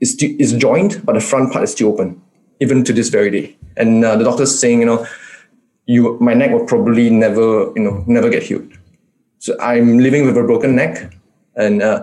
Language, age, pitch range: English, 20-39, 110-145 Hz